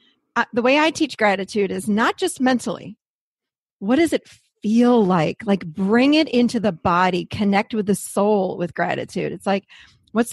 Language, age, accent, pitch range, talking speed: English, 40-59, American, 195-250 Hz, 170 wpm